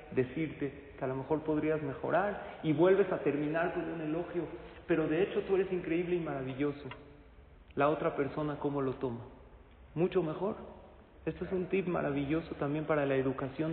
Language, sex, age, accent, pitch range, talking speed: Spanish, male, 40-59, Mexican, 140-185 Hz, 170 wpm